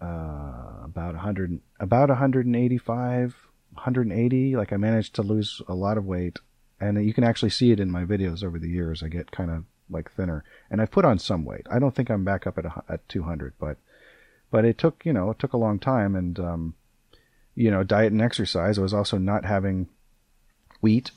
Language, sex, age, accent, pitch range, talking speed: English, male, 40-59, American, 90-115 Hz, 230 wpm